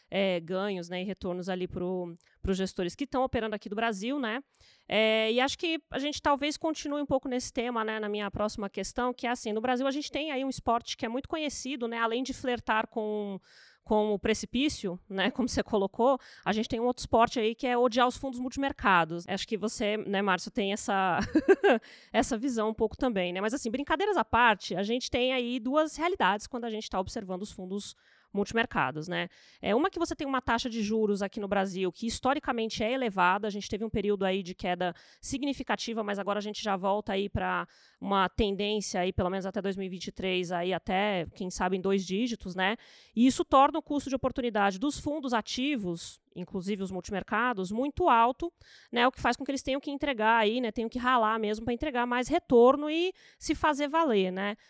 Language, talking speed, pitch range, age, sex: Portuguese, 215 wpm, 200-265 Hz, 20-39, female